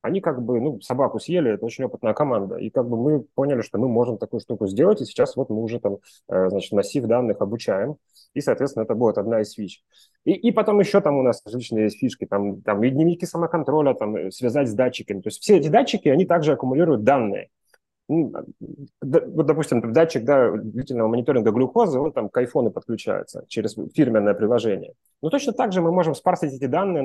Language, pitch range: Russian, 110-155 Hz